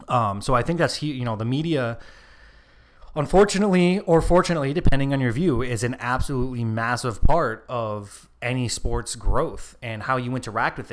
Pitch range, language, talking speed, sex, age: 115-150 Hz, English, 165 wpm, male, 20-39